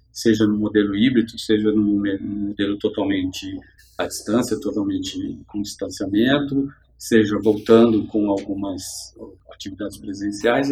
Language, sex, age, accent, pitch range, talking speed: Portuguese, male, 50-69, Brazilian, 100-125 Hz, 105 wpm